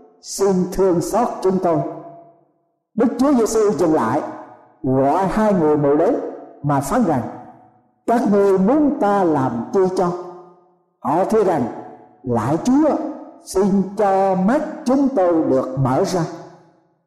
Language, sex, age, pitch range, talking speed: Vietnamese, male, 60-79, 160-210 Hz, 135 wpm